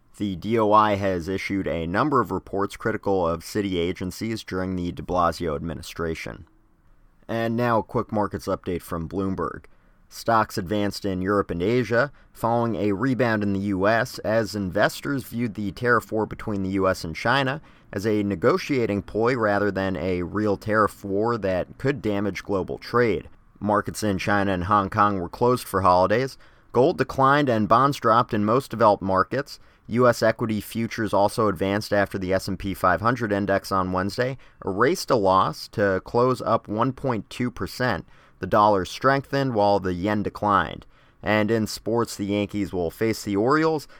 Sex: male